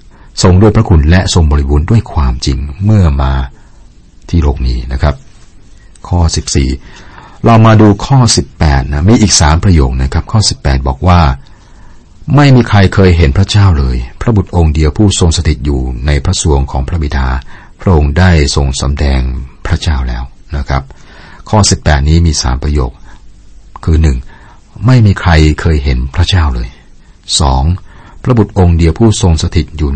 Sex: male